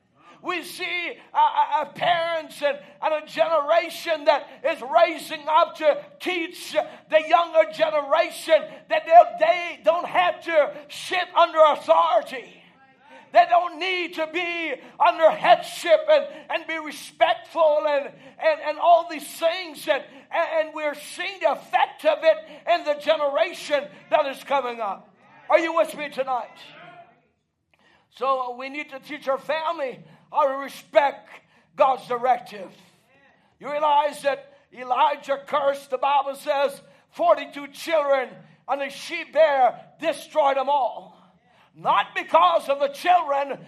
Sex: male